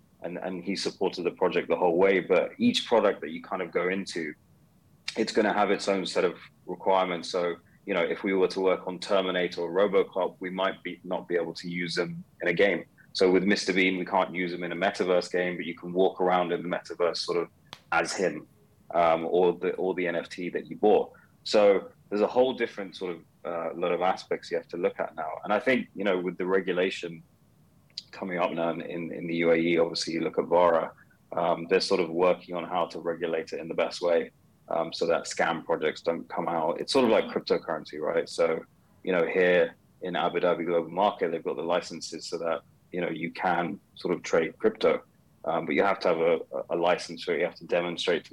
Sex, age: male, 30-49